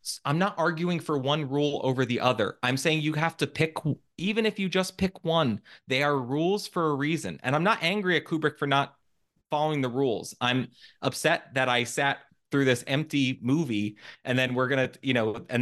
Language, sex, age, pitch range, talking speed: English, male, 30-49, 120-155 Hz, 210 wpm